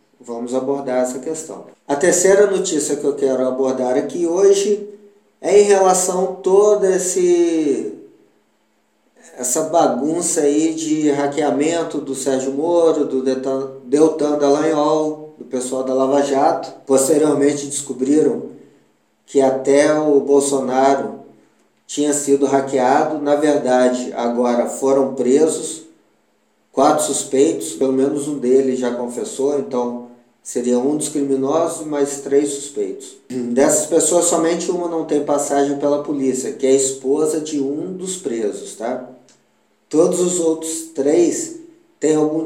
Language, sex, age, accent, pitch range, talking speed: Portuguese, male, 20-39, Brazilian, 135-160 Hz, 125 wpm